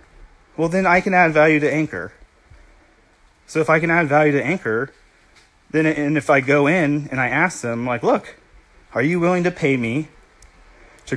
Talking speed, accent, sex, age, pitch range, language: 190 wpm, American, male, 30-49, 125-170 Hz, English